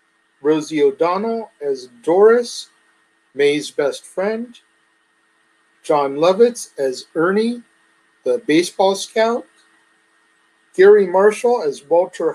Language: English